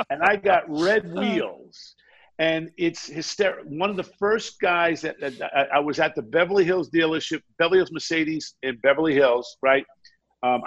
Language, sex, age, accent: English, male, 50-69, American